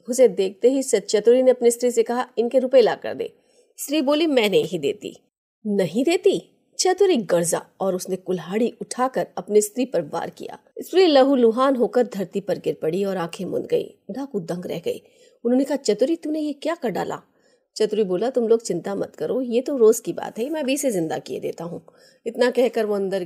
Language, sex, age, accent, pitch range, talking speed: Hindi, female, 30-49, native, 195-280 Hz, 140 wpm